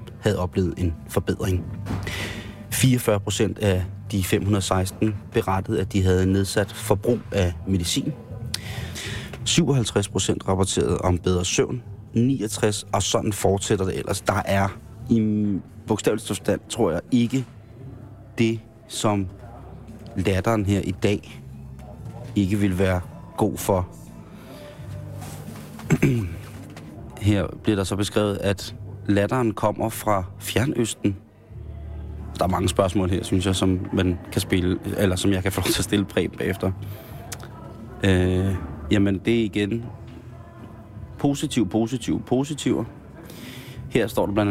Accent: native